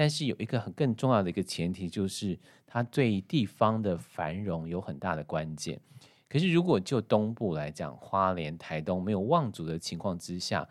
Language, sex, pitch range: Chinese, male, 90-125 Hz